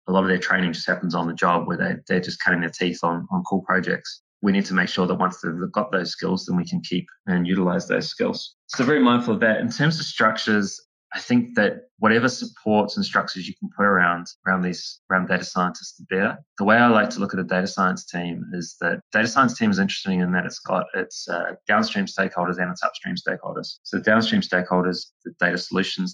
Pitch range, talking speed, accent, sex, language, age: 90-115 Hz, 240 wpm, Australian, male, English, 20-39